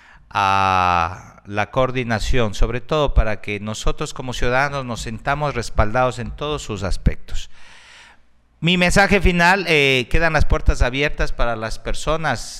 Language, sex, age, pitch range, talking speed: Spanish, male, 50-69, 95-125 Hz, 135 wpm